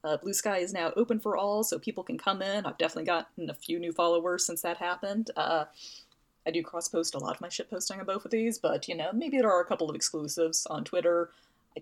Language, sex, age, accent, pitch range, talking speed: English, female, 30-49, American, 160-215 Hz, 260 wpm